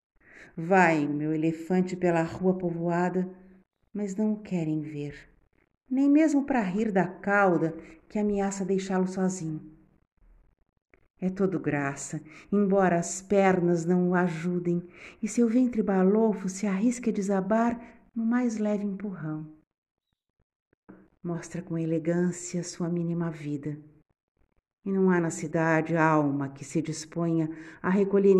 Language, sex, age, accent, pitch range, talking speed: Portuguese, female, 50-69, Brazilian, 160-195 Hz, 125 wpm